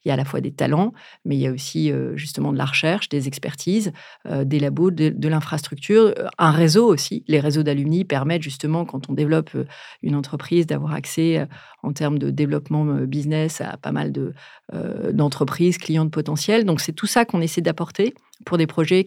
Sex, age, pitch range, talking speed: female, 40-59, 150-180 Hz, 190 wpm